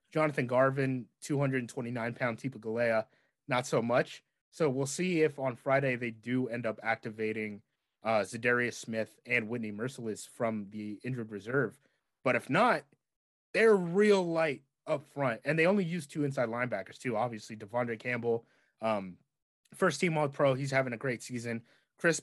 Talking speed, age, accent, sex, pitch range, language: 150 wpm, 20-39, American, male, 115-145 Hz, English